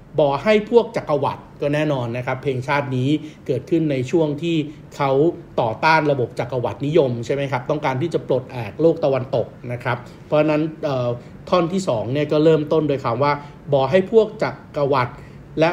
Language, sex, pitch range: Thai, male, 125-160 Hz